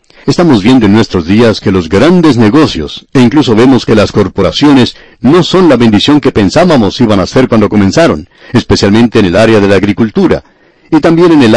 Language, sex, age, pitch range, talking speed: Spanish, male, 60-79, 105-135 Hz, 190 wpm